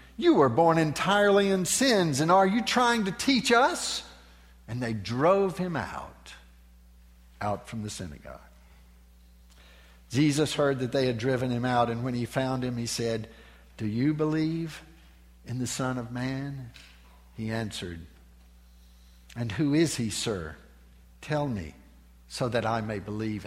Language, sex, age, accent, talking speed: English, male, 60-79, American, 150 wpm